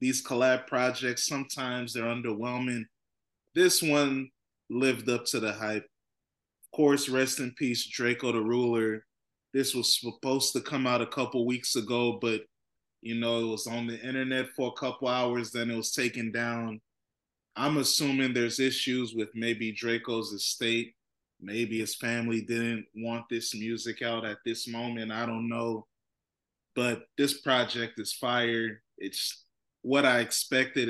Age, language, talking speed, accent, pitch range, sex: 20-39, English, 155 wpm, American, 115-130 Hz, male